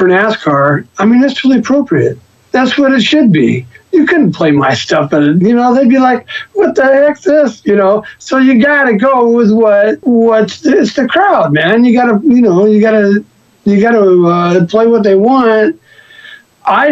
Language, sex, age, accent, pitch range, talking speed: English, male, 50-69, American, 160-235 Hz, 200 wpm